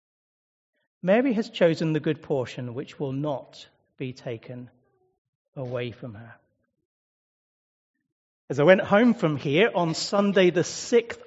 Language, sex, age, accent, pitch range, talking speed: English, male, 40-59, British, 160-250 Hz, 130 wpm